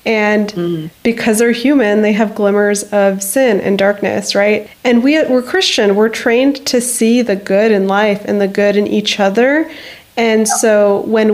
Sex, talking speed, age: female, 170 wpm, 20-39